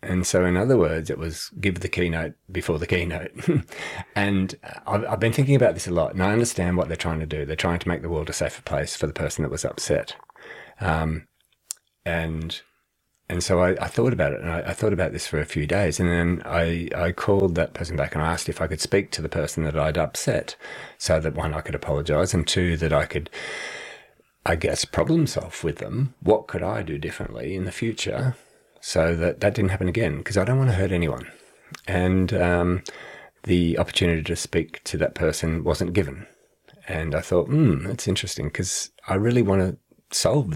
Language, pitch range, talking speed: English, 85-100 Hz, 215 wpm